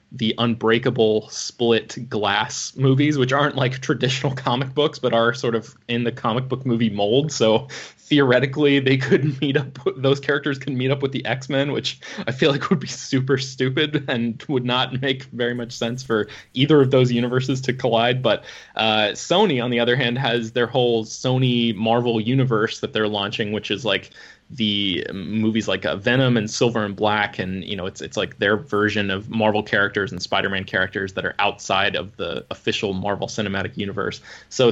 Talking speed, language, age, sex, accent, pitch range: 190 wpm, English, 20-39, male, American, 110-135 Hz